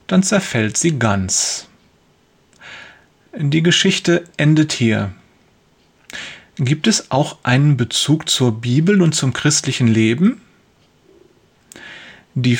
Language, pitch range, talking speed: German, 130-175 Hz, 95 wpm